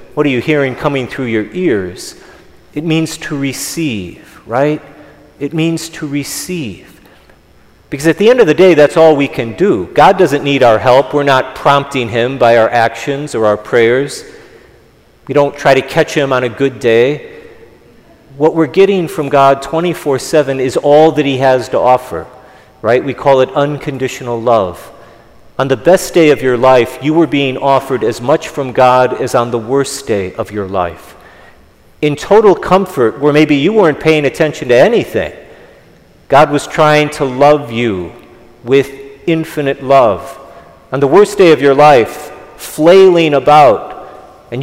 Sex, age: male, 40-59